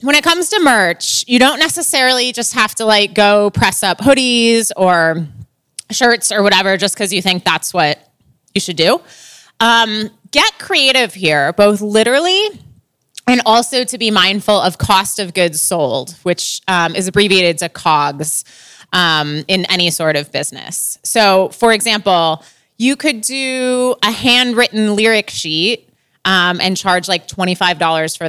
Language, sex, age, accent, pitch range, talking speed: English, female, 20-39, American, 175-230 Hz, 160 wpm